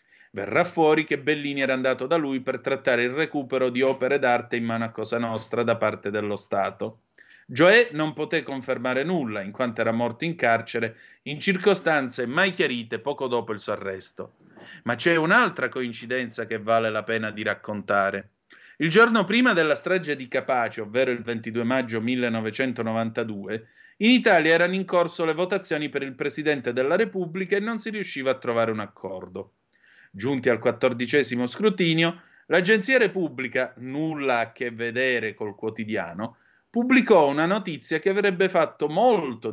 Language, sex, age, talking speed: Italian, male, 30-49, 160 wpm